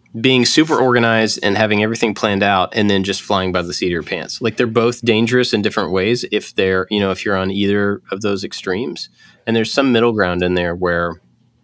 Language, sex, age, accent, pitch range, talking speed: English, male, 20-39, American, 85-115 Hz, 225 wpm